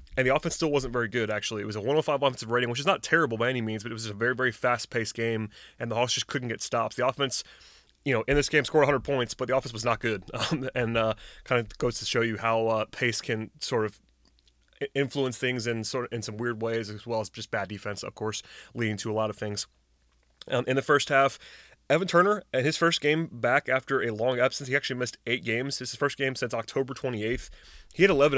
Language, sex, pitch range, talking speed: English, male, 110-135 Hz, 260 wpm